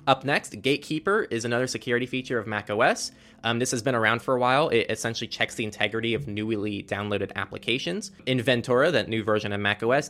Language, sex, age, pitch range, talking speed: English, male, 20-39, 105-130 Hz, 195 wpm